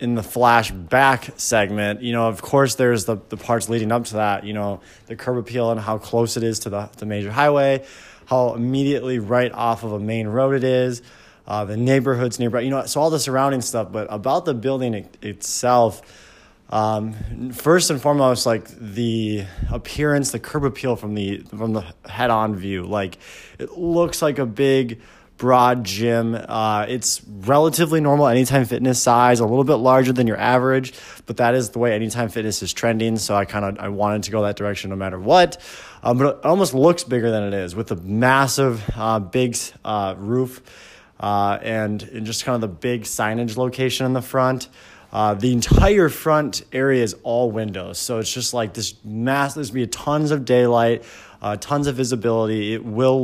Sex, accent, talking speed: male, American, 195 wpm